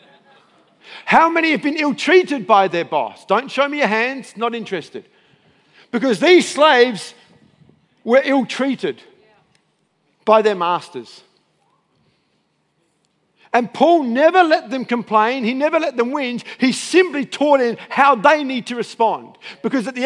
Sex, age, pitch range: male, 50-69, 235-320 Hz